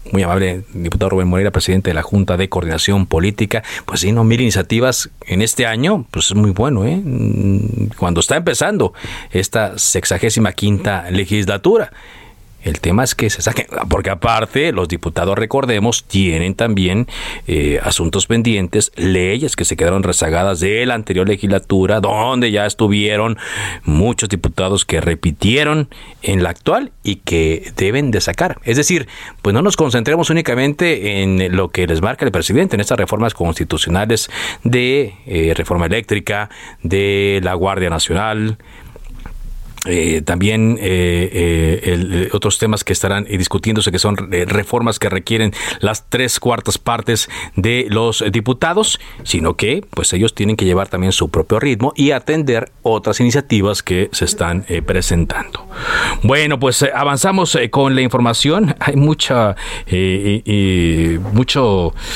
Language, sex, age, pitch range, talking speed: Spanish, male, 50-69, 90-115 Hz, 145 wpm